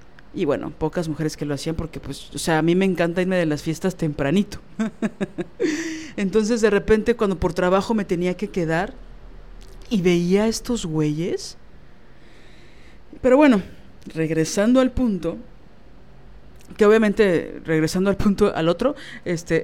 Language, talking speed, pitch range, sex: Spanish, 145 wpm, 175-220 Hz, female